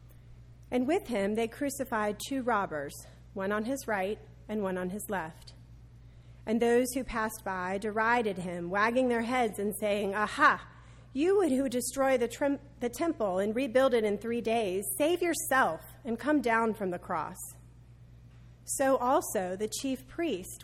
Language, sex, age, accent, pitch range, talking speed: English, female, 30-49, American, 175-245 Hz, 155 wpm